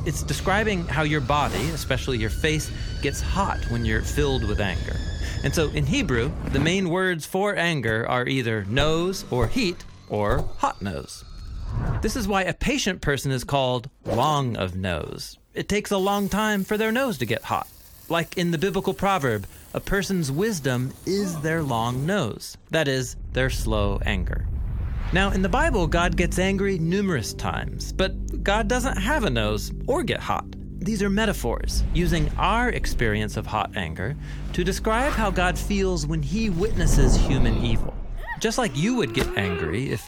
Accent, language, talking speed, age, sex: American, English, 175 wpm, 30-49, male